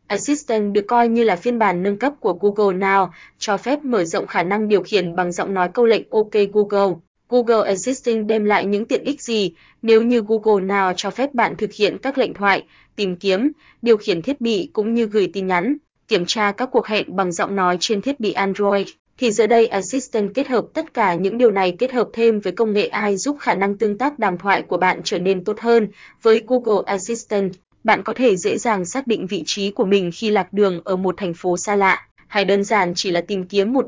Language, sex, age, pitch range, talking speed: Vietnamese, female, 20-39, 195-230 Hz, 235 wpm